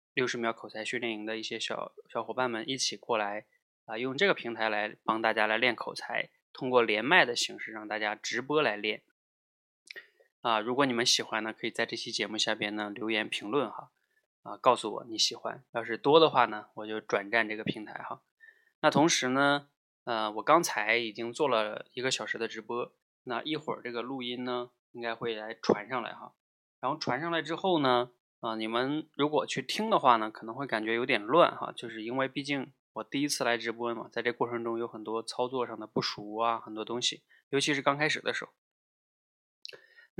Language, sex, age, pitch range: Chinese, male, 20-39, 110-140 Hz